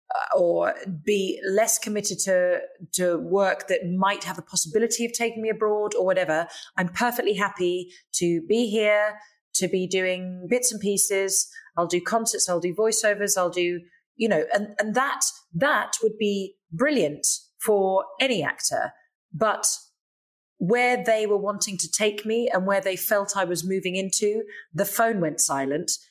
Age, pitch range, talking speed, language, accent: 30-49, 170-210 Hz, 160 wpm, English, British